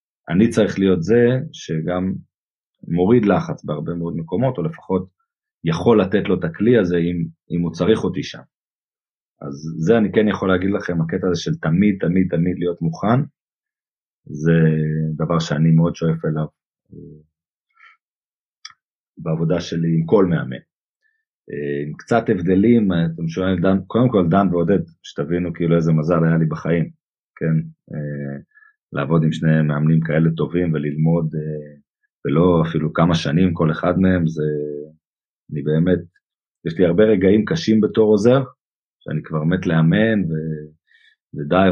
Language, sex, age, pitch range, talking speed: Hebrew, male, 40-59, 80-100 Hz, 140 wpm